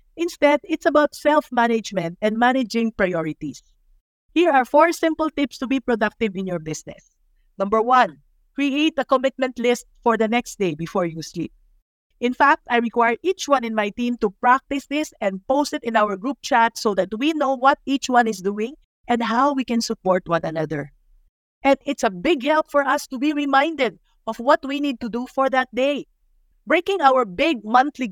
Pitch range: 210-280 Hz